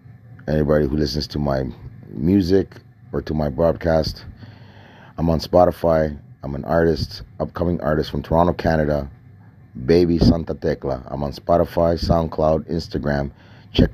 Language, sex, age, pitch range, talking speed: English, male, 30-49, 80-110 Hz, 130 wpm